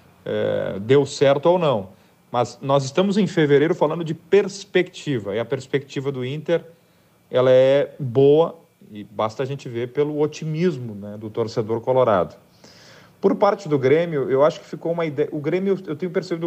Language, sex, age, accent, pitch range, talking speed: Portuguese, male, 40-59, Brazilian, 115-155 Hz, 170 wpm